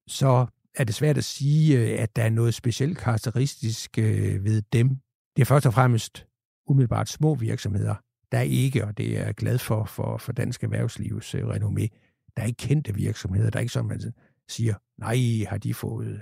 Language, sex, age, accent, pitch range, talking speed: Danish, male, 60-79, native, 110-125 Hz, 175 wpm